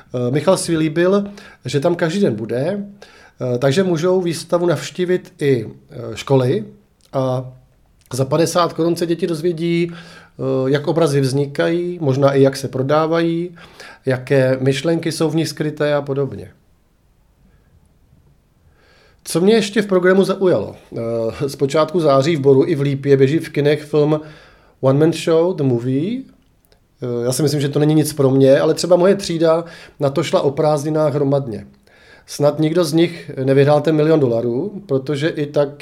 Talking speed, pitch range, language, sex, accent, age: 150 wpm, 135-165 Hz, Czech, male, native, 40-59